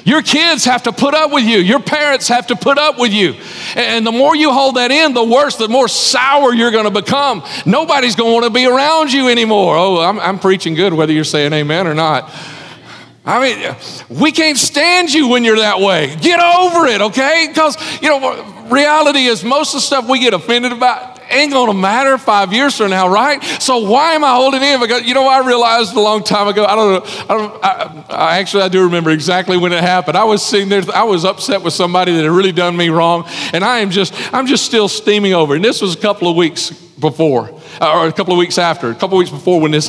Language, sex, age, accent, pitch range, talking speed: English, male, 40-59, American, 190-255 Hz, 245 wpm